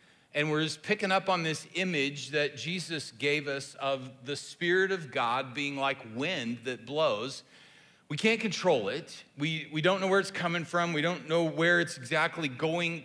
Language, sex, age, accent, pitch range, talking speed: English, male, 40-59, American, 145-180 Hz, 190 wpm